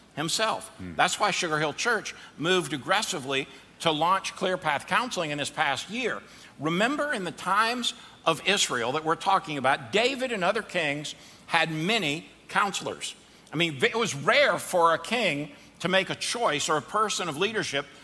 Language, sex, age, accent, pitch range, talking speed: English, male, 60-79, American, 155-210 Hz, 170 wpm